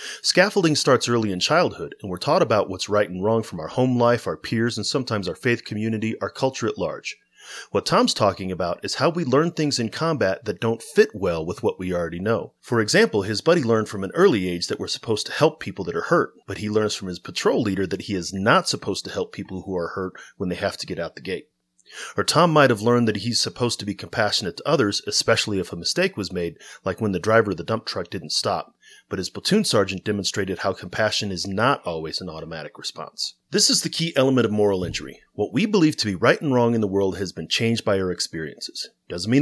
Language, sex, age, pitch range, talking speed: English, male, 30-49, 95-125 Hz, 245 wpm